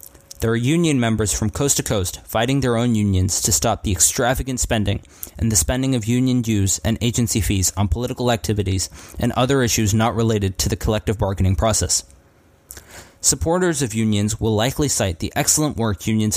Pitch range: 90-120 Hz